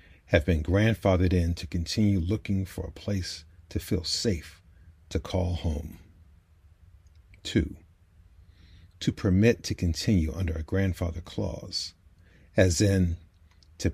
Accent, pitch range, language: American, 85-100 Hz, English